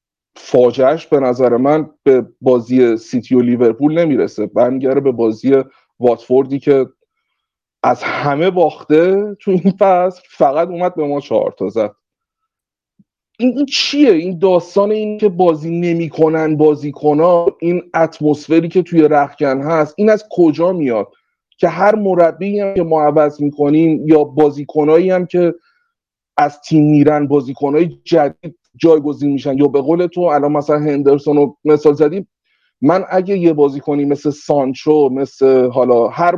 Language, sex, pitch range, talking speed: Persian, male, 145-185 Hz, 145 wpm